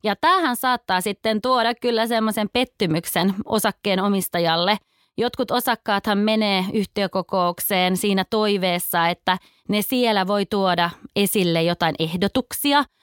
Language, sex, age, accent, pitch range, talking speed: Finnish, female, 20-39, native, 190-230 Hz, 110 wpm